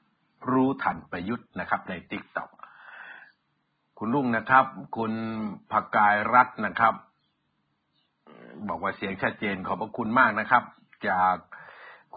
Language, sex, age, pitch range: Thai, male, 60-79, 105-145 Hz